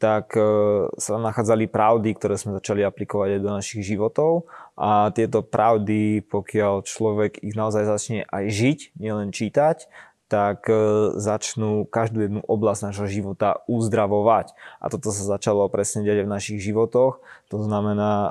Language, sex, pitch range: Slovak, male, 105-115 Hz